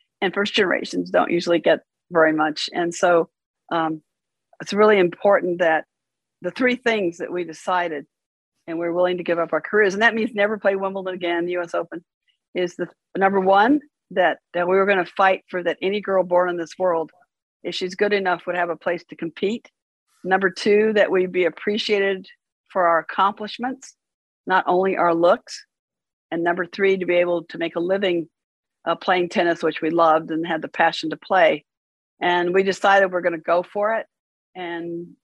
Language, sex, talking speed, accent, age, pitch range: English, female, 190 wpm, American, 50-69, 170-200 Hz